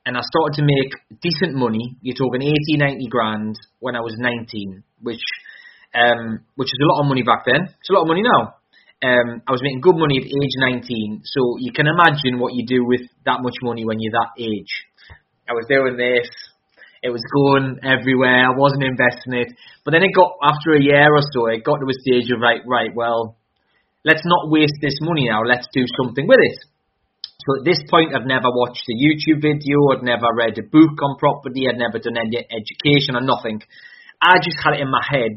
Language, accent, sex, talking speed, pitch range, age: English, British, male, 220 wpm, 120-145 Hz, 20-39